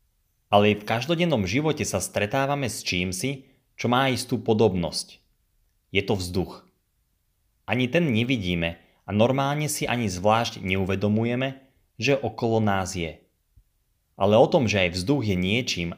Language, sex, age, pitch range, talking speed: Slovak, male, 30-49, 90-125 Hz, 140 wpm